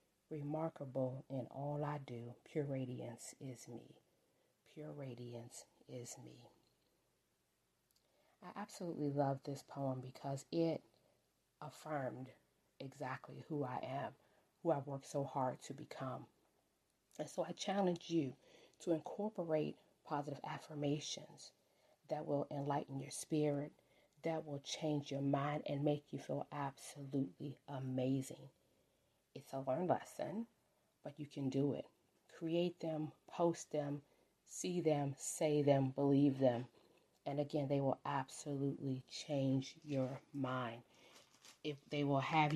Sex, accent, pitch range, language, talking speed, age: female, American, 130-150 Hz, English, 125 wpm, 40-59